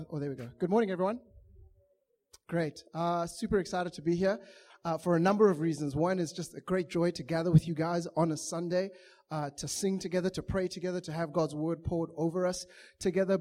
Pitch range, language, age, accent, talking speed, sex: 170-200 Hz, English, 20-39, South African, 220 wpm, male